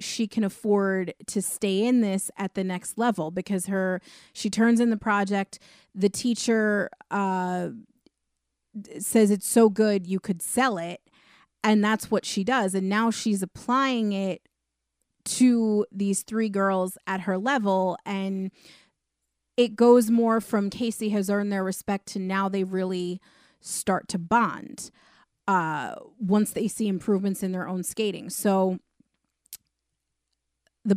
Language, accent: English, American